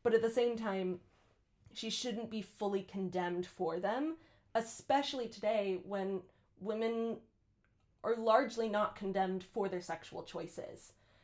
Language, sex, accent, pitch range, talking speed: English, female, American, 170-220 Hz, 130 wpm